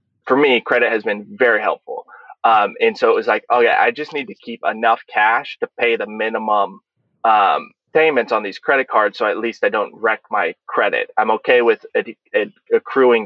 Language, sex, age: English, male, 20-39